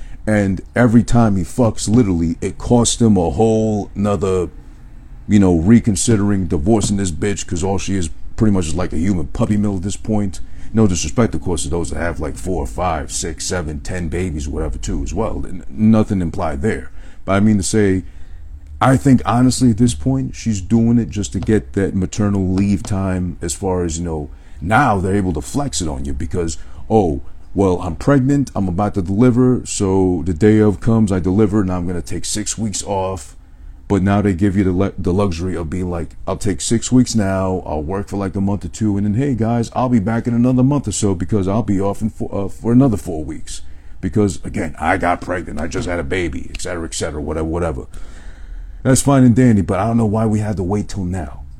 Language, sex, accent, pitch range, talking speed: English, male, American, 85-110 Hz, 225 wpm